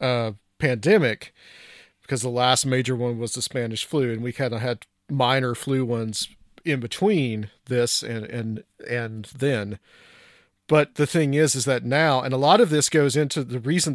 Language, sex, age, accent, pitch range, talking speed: English, male, 40-59, American, 120-145 Hz, 180 wpm